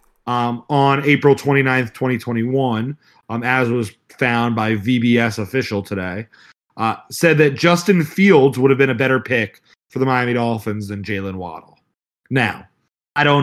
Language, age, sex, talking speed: English, 30-49, male, 150 wpm